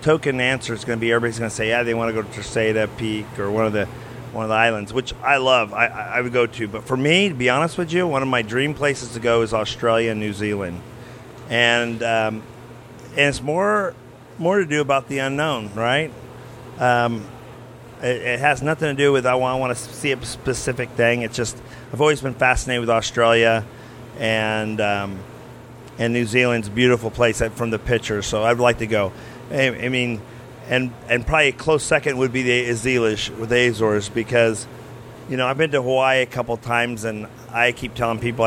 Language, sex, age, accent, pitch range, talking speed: English, male, 40-59, American, 115-130 Hz, 215 wpm